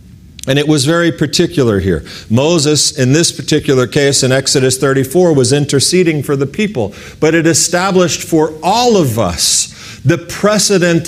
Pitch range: 130-175 Hz